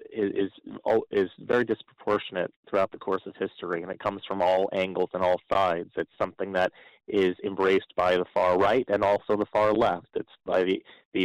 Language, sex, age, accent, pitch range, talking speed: English, male, 30-49, American, 95-120 Hz, 195 wpm